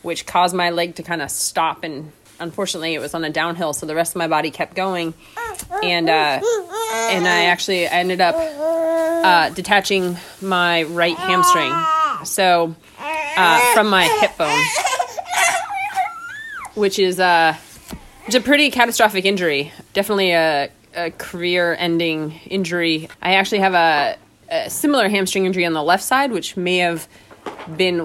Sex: female